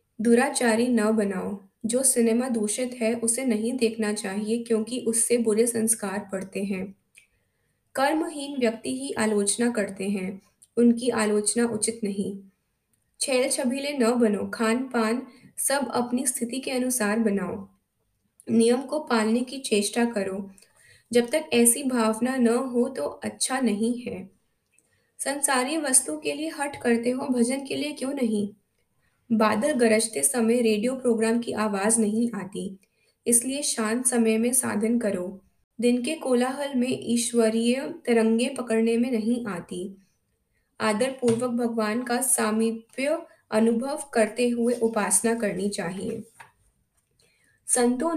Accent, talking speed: native, 130 wpm